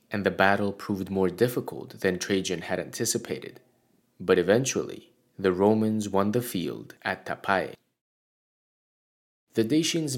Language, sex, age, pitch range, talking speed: English, male, 20-39, 95-120 Hz, 125 wpm